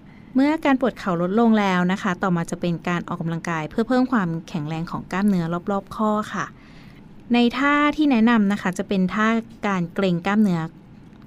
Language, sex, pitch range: Thai, female, 175-230 Hz